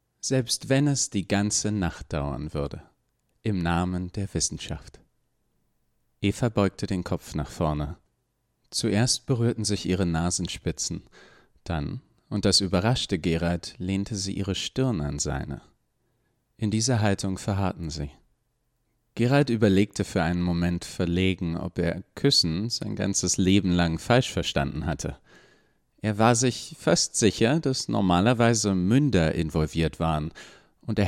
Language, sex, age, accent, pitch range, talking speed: German, male, 40-59, German, 80-110 Hz, 130 wpm